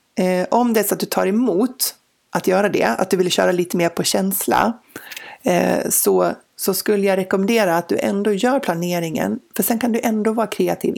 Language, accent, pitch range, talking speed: Swedish, native, 180-220 Hz, 190 wpm